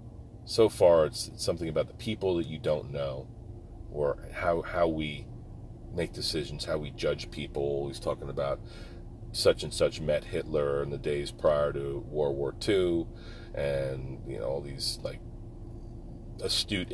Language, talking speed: English, 155 wpm